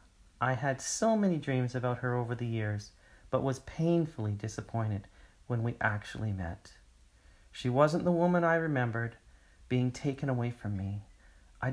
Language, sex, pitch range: English, male, 100-145 Hz